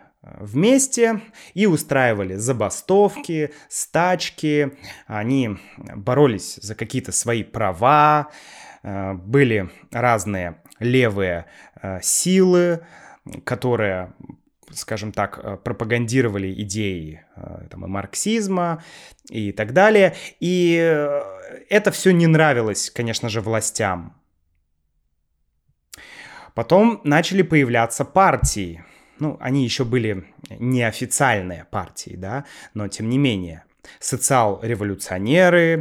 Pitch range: 100-155 Hz